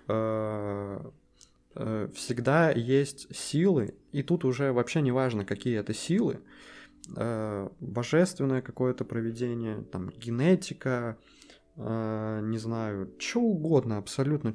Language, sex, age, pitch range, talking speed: Russian, male, 20-39, 100-125 Hz, 85 wpm